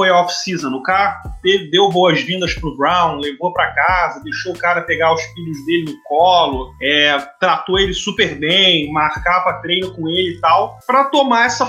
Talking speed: 170 wpm